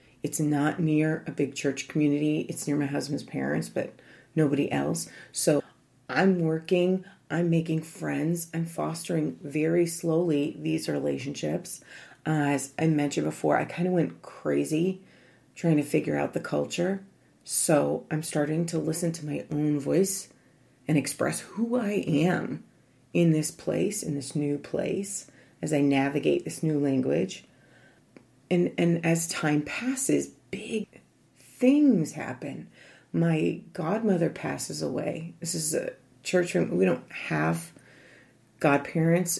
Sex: female